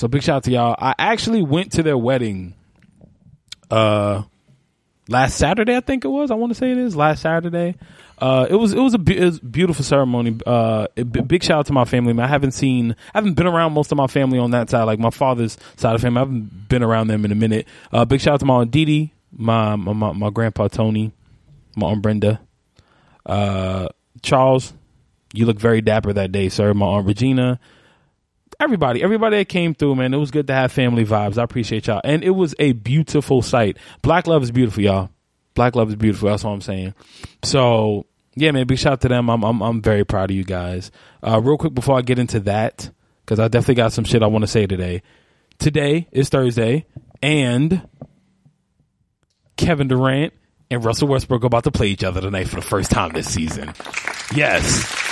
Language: English